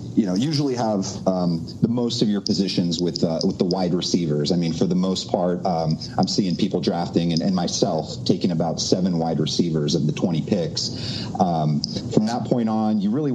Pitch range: 85-105 Hz